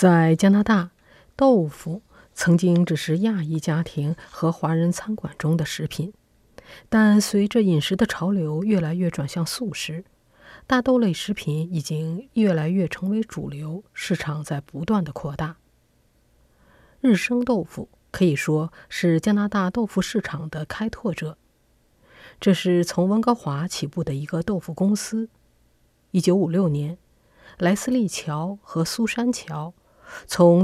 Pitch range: 160-210 Hz